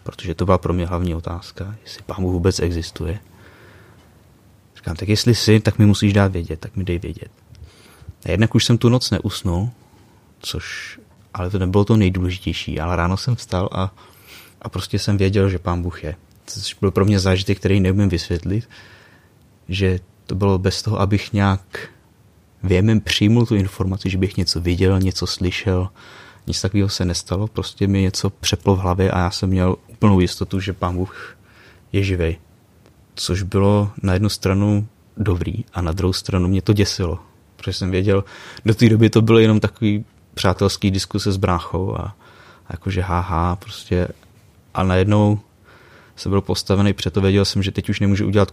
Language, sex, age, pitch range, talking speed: Czech, male, 30-49, 90-105 Hz, 175 wpm